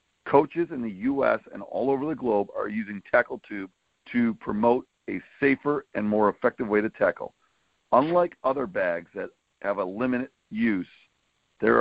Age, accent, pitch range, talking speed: 50-69, American, 115-155 Hz, 165 wpm